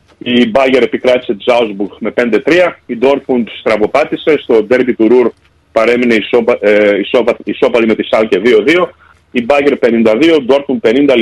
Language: Greek